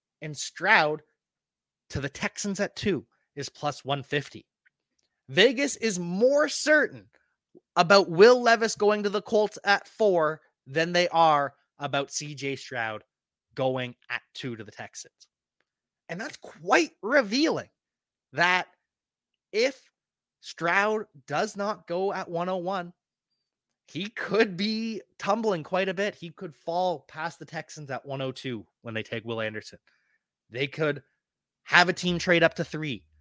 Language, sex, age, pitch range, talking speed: English, male, 30-49, 140-200 Hz, 135 wpm